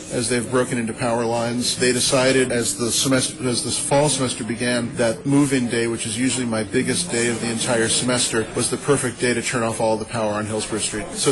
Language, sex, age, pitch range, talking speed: English, male, 40-59, 115-130 Hz, 230 wpm